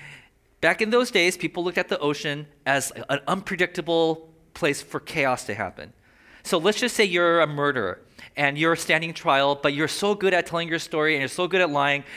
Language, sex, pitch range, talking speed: English, male, 145-195 Hz, 205 wpm